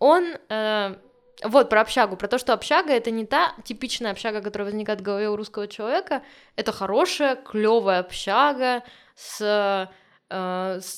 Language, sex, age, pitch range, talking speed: Russian, female, 20-39, 205-255 Hz, 160 wpm